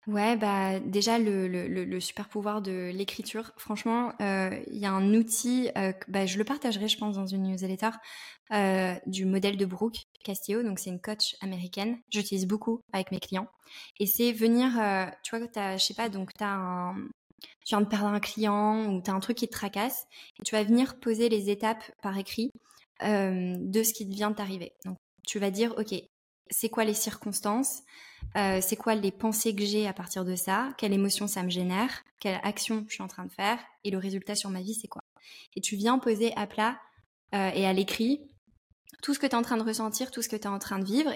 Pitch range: 195-230 Hz